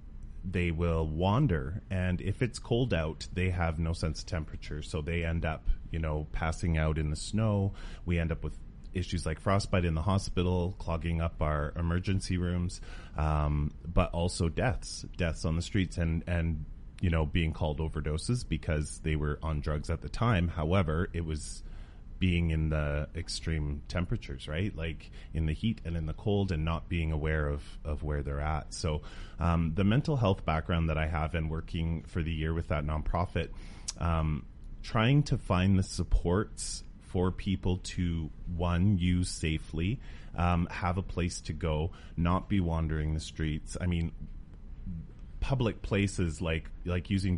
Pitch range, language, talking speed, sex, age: 80-90 Hz, English, 170 wpm, male, 30-49